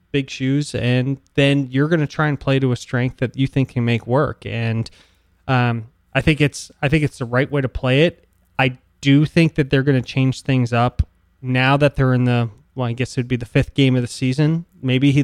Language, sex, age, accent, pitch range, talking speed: English, male, 20-39, American, 120-140 Hz, 245 wpm